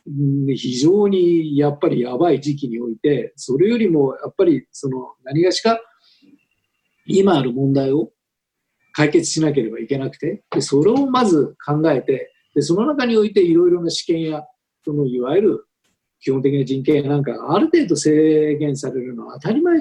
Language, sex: Japanese, male